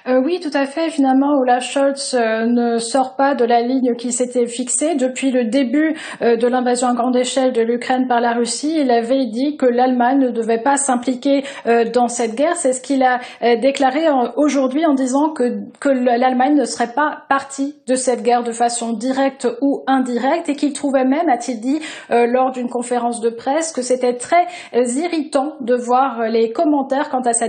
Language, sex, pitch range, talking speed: French, female, 240-285 Hz, 190 wpm